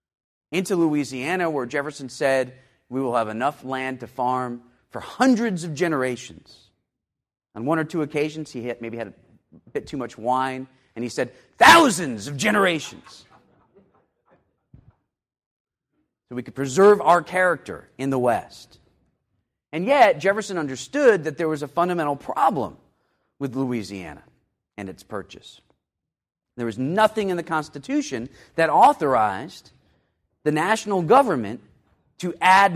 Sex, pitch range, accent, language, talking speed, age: male, 130-185 Hz, American, English, 130 wpm, 40-59